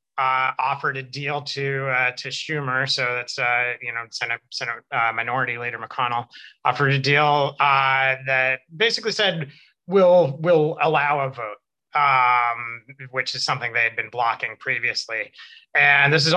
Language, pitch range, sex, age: English, 125-145 Hz, male, 30-49